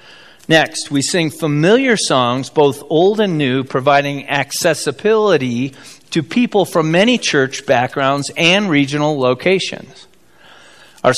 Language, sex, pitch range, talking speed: English, male, 125-160 Hz, 115 wpm